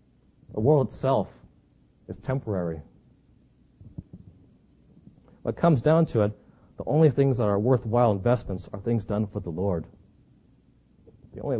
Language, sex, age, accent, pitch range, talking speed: English, male, 40-59, American, 95-120 Hz, 130 wpm